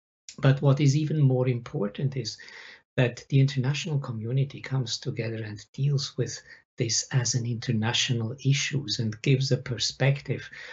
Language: English